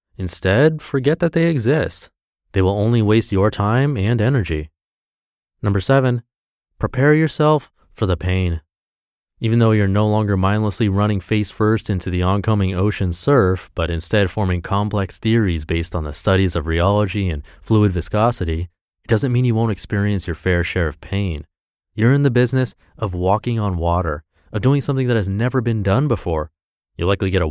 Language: English